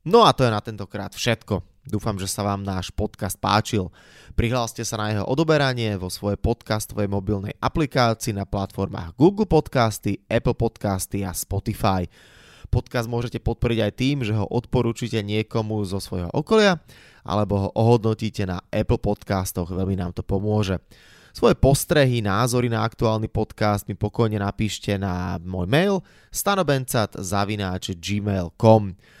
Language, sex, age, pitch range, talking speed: Slovak, male, 20-39, 100-120 Hz, 140 wpm